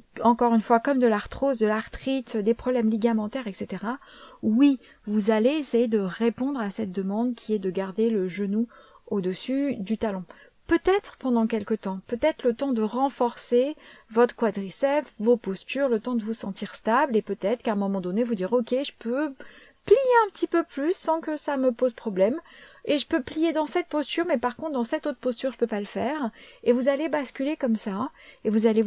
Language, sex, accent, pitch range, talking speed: French, female, French, 215-270 Hz, 210 wpm